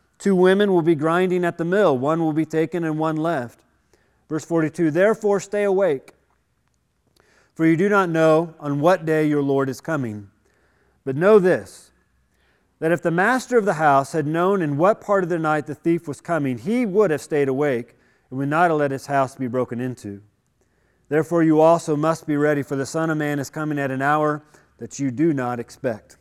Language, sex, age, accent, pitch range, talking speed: English, male, 40-59, American, 125-155 Hz, 205 wpm